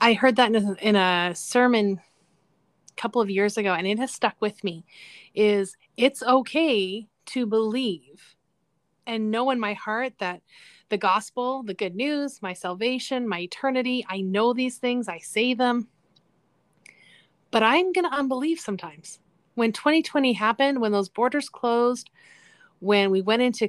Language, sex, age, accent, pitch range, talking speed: English, female, 30-49, American, 195-245 Hz, 155 wpm